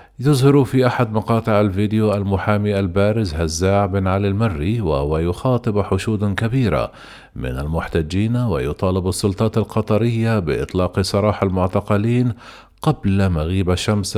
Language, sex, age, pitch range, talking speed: Arabic, male, 40-59, 95-115 Hz, 110 wpm